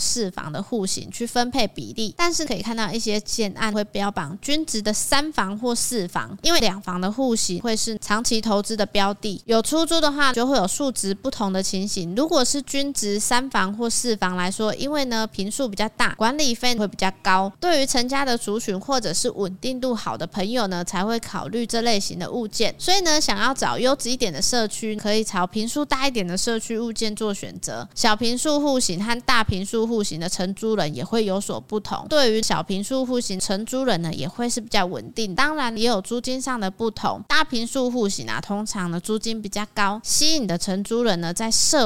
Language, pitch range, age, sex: Chinese, 200-245 Hz, 20-39, female